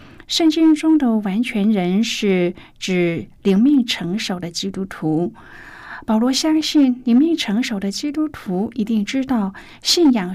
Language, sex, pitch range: Chinese, female, 190-250 Hz